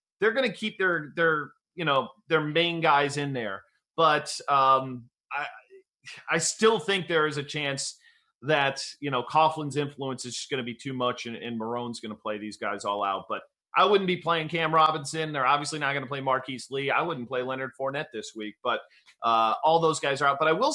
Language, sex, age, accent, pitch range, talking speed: English, male, 30-49, American, 135-195 Hz, 225 wpm